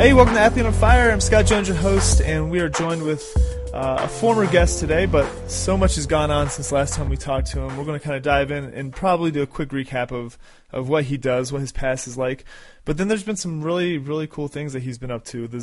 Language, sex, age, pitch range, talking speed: English, male, 30-49, 130-155 Hz, 275 wpm